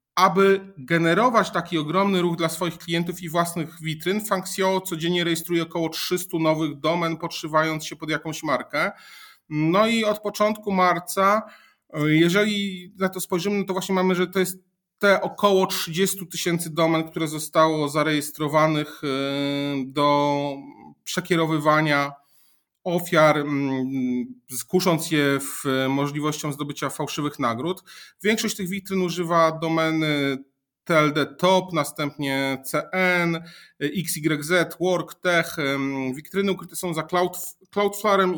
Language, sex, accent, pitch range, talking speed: Polish, male, native, 150-185 Hz, 115 wpm